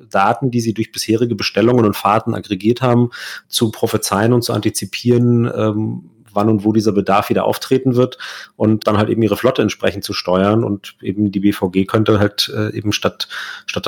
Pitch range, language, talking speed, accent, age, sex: 100-120 Hz, German, 185 wpm, German, 40-59, male